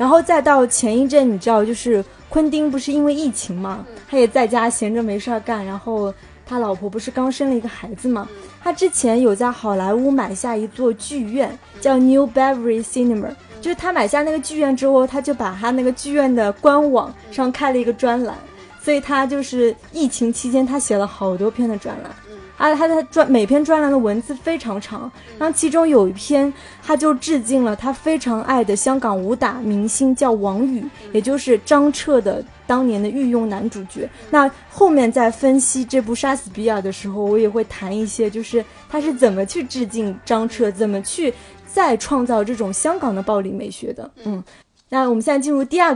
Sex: female